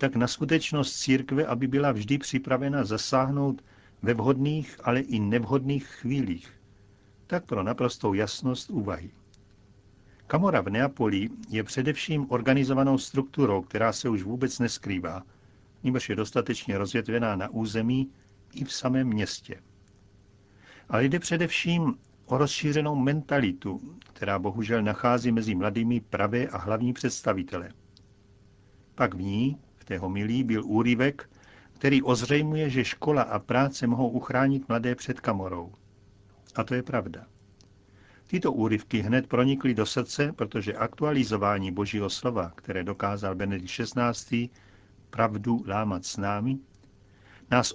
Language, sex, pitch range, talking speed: Czech, male, 100-130 Hz, 125 wpm